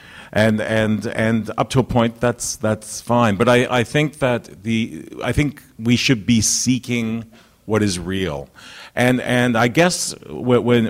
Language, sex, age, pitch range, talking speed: English, male, 50-69, 100-130 Hz, 165 wpm